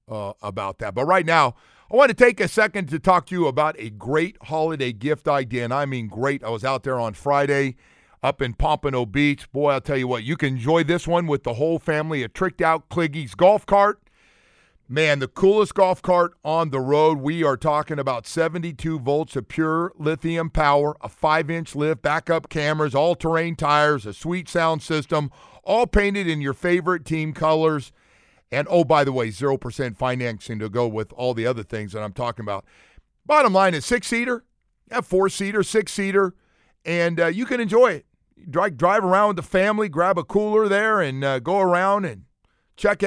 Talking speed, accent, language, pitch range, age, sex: 205 wpm, American, English, 130-180 Hz, 50-69, male